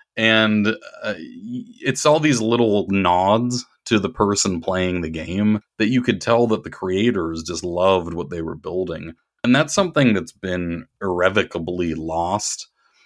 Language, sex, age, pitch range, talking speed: English, male, 30-49, 85-105 Hz, 150 wpm